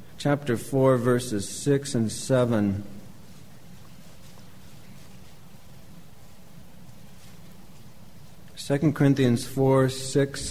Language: English